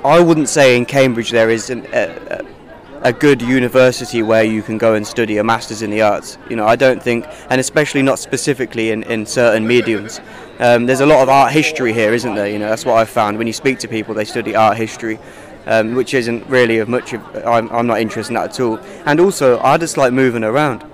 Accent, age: British, 20-39